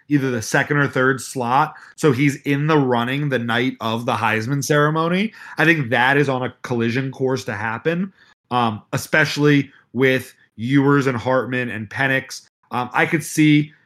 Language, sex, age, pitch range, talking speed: English, male, 30-49, 125-150 Hz, 170 wpm